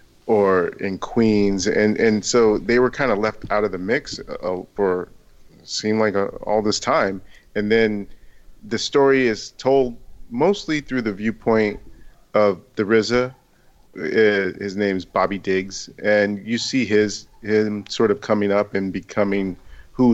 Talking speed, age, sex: 155 wpm, 40-59, male